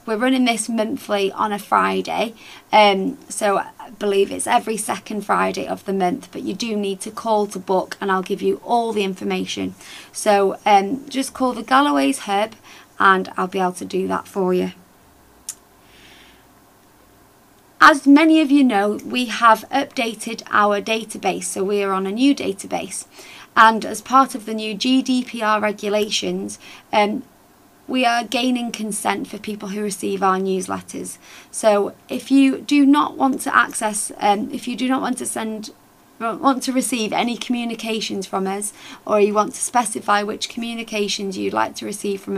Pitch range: 205-260 Hz